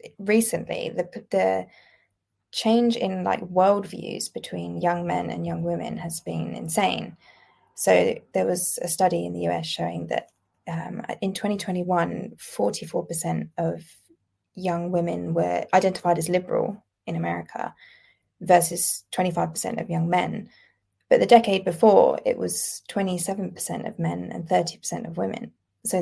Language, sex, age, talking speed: English, female, 20-39, 135 wpm